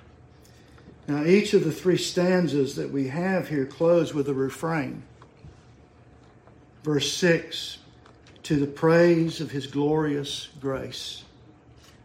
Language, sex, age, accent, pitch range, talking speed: English, male, 50-69, American, 130-155 Hz, 115 wpm